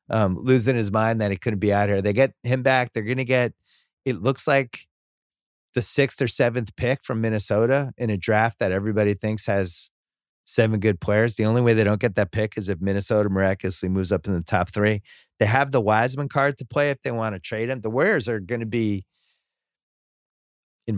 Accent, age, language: American, 30-49, English